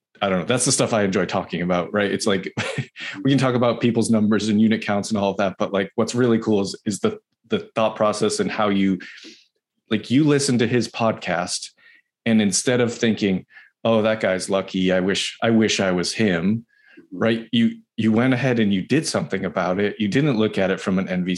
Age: 30-49